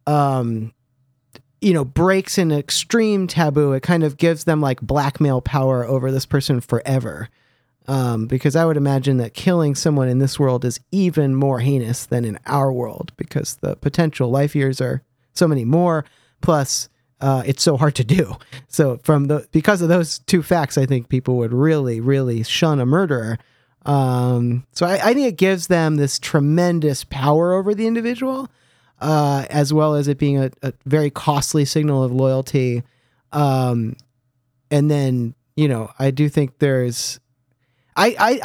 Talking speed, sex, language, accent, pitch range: 170 wpm, male, English, American, 125-155 Hz